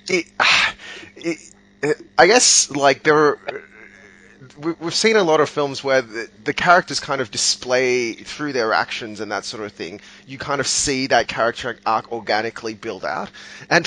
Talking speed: 155 wpm